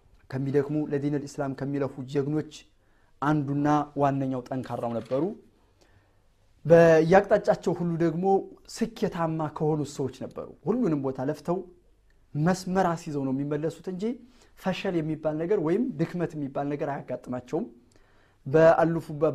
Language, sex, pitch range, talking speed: Amharic, male, 135-170 Hz, 100 wpm